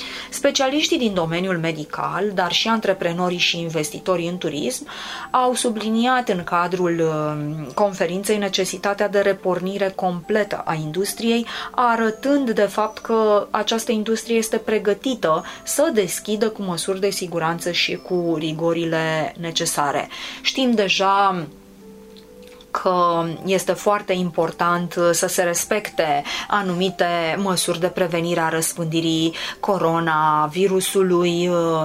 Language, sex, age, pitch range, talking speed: Romanian, female, 20-39, 165-210 Hz, 105 wpm